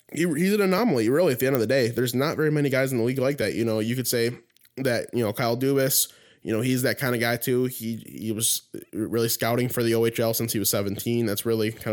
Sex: male